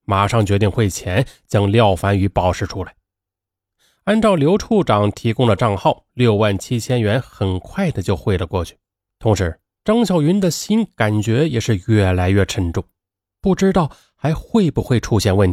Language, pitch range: Chinese, 95-115 Hz